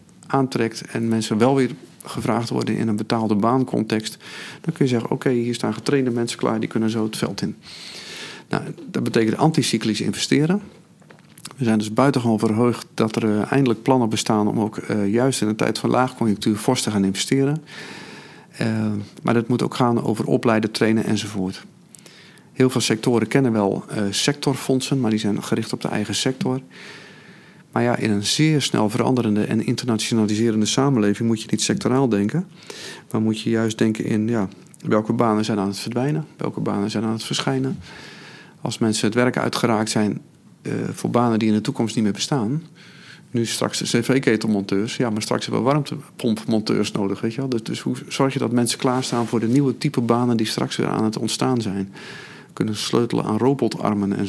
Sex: male